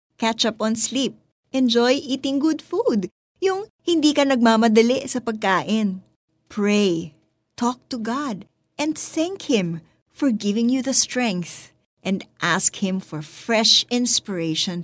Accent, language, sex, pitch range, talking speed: native, Filipino, female, 175-270 Hz, 130 wpm